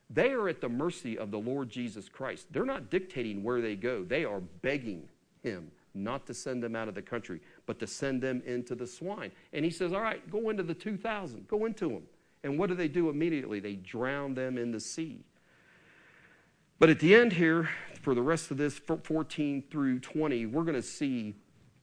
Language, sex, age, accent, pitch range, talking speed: English, male, 40-59, American, 110-160 Hz, 210 wpm